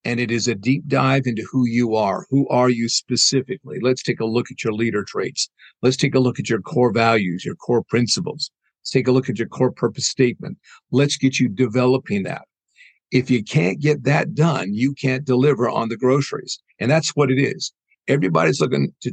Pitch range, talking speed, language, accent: 120-140 Hz, 210 wpm, English, American